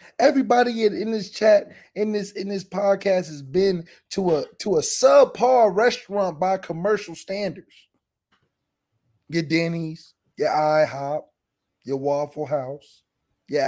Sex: male